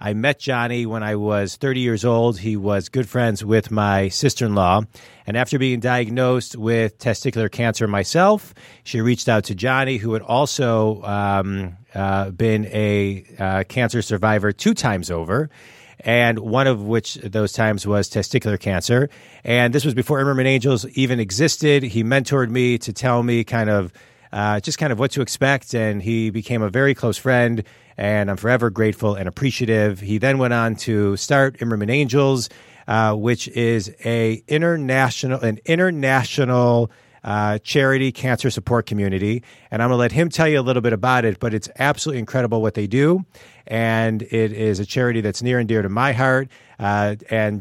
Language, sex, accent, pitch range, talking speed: English, male, American, 105-130 Hz, 175 wpm